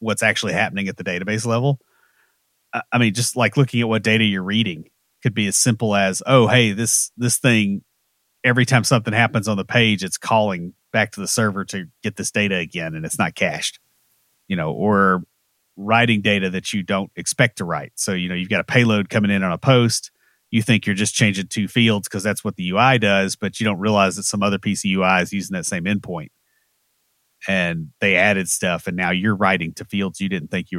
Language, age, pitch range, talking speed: English, 30-49, 95-115 Hz, 220 wpm